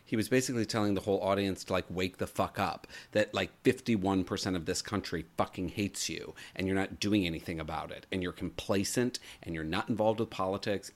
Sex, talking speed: male, 210 wpm